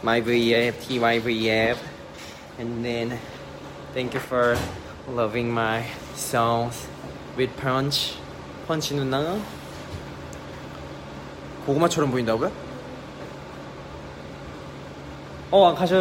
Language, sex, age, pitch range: Korean, male, 20-39, 115-150 Hz